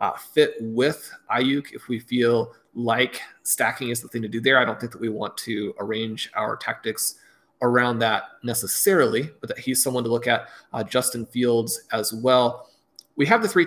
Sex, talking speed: male, 195 wpm